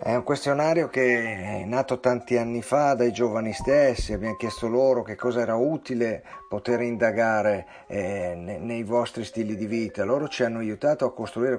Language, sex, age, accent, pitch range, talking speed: English, male, 50-69, Italian, 110-130 Hz, 165 wpm